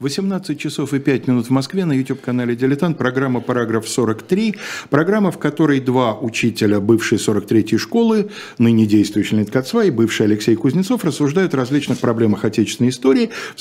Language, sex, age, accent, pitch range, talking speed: Russian, male, 50-69, native, 125-185 Hz, 160 wpm